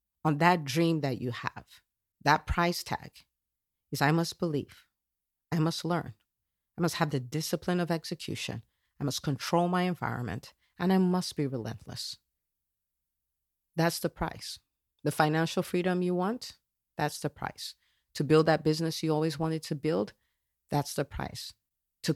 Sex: female